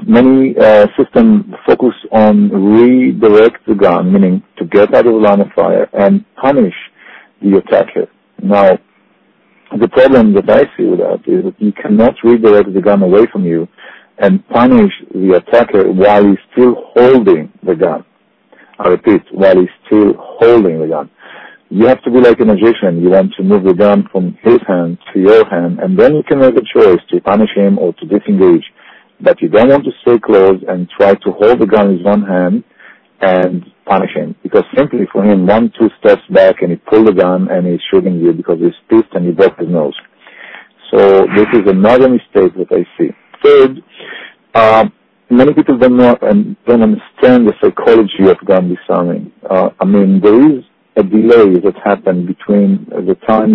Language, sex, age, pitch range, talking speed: English, male, 50-69, 100-130 Hz, 185 wpm